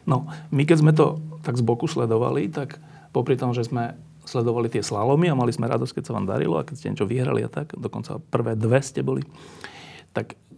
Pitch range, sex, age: 115-150 Hz, male, 40-59